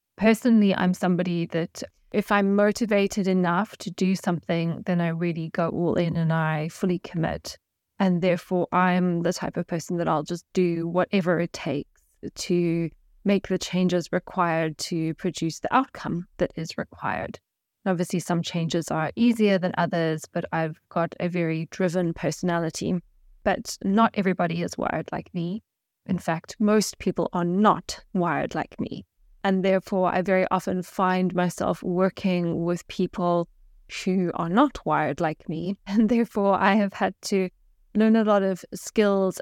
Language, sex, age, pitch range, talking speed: English, female, 20-39, 170-195 Hz, 160 wpm